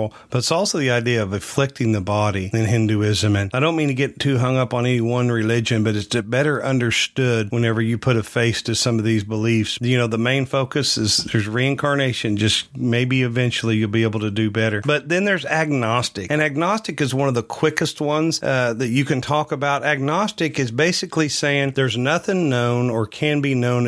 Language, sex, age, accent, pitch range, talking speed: English, male, 40-59, American, 110-140 Hz, 210 wpm